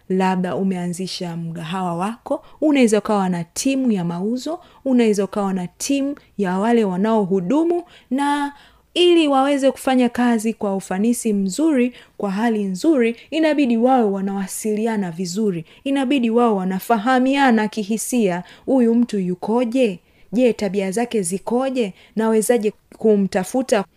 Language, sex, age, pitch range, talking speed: Swahili, female, 30-49, 195-255 Hz, 110 wpm